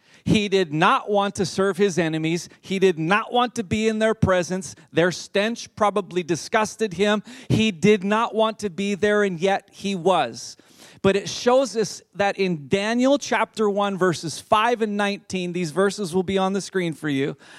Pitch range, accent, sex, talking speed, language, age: 175-225 Hz, American, male, 190 wpm, English, 40-59